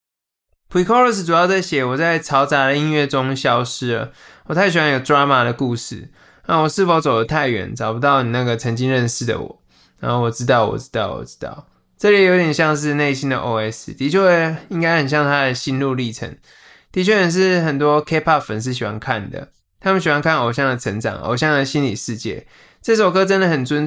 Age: 20-39